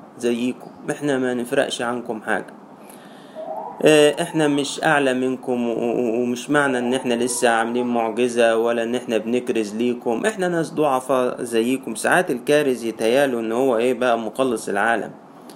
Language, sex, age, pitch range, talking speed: Arabic, male, 20-39, 115-150 Hz, 135 wpm